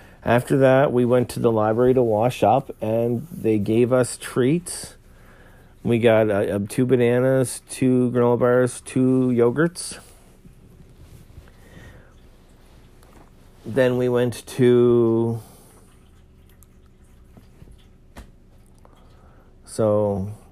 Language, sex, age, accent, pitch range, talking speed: English, male, 50-69, American, 100-125 Hz, 90 wpm